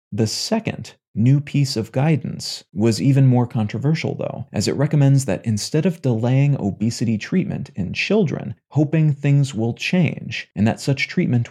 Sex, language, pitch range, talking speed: male, English, 115-140 Hz, 155 wpm